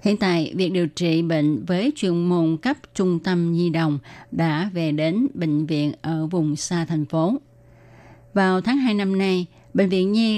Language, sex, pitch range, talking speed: Vietnamese, female, 155-190 Hz, 185 wpm